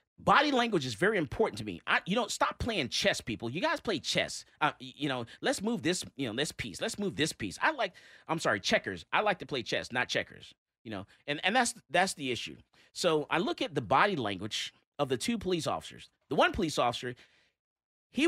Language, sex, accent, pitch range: English, male, American, 140-210 Hz